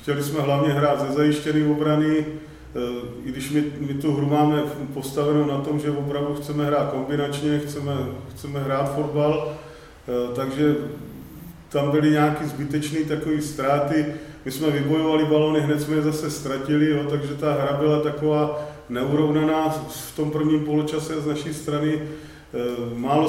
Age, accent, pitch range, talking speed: 40-59, native, 145-150 Hz, 145 wpm